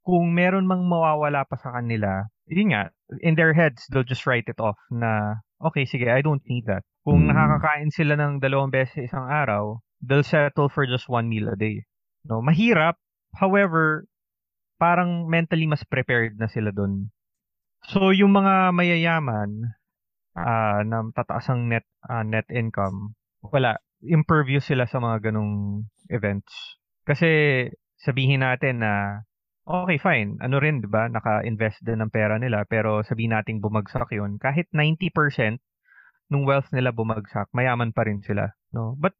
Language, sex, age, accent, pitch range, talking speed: Filipino, male, 20-39, native, 110-150 Hz, 155 wpm